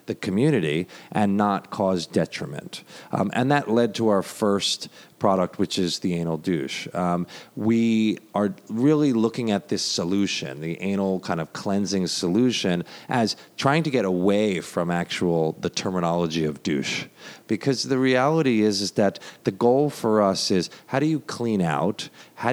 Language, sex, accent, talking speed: English, male, American, 160 wpm